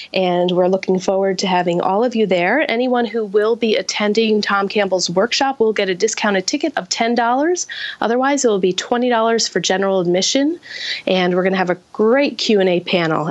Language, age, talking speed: English, 30-49, 185 wpm